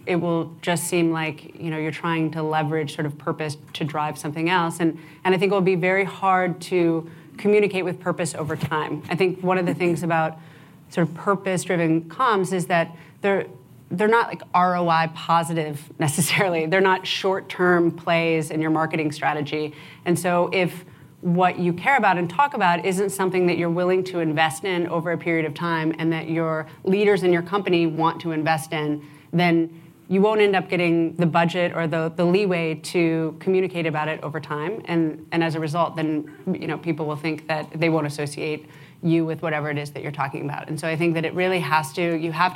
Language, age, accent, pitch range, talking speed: English, 30-49, American, 155-180 Hz, 210 wpm